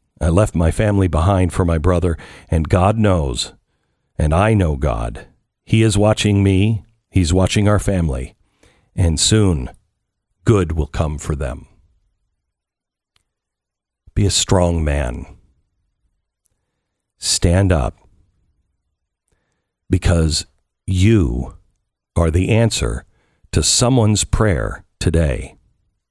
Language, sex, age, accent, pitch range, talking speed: English, male, 50-69, American, 85-115 Hz, 105 wpm